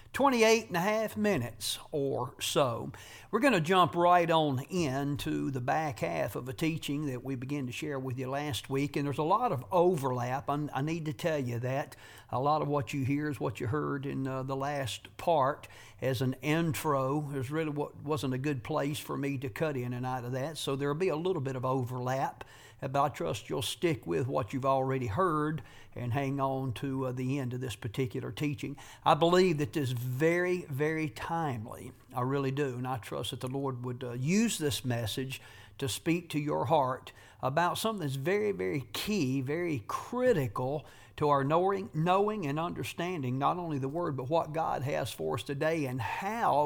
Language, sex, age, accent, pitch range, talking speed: English, male, 50-69, American, 130-155 Hz, 200 wpm